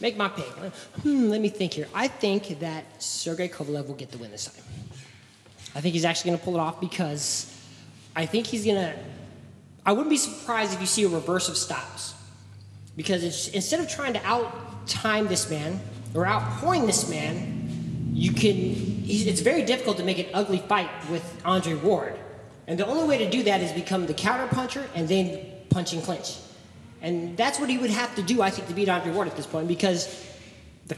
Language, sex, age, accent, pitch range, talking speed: English, male, 20-39, American, 160-215 Hz, 205 wpm